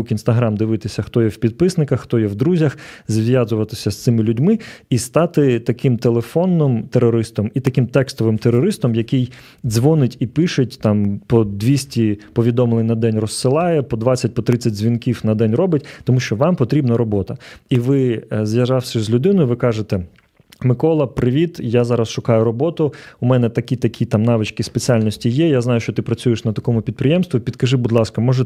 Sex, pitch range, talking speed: male, 115-130 Hz, 165 wpm